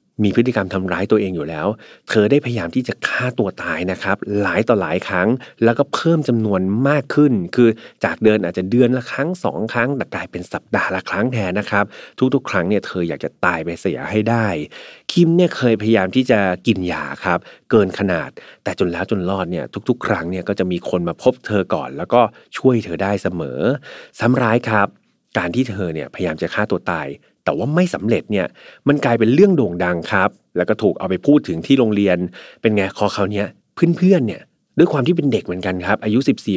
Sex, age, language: male, 30-49, Thai